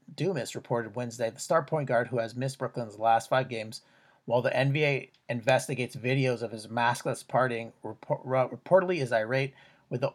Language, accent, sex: English, American, male